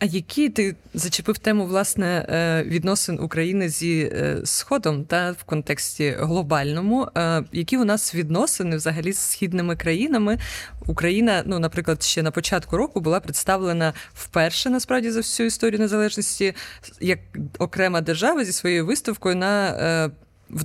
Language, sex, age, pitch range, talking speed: Ukrainian, female, 20-39, 165-215 Hz, 130 wpm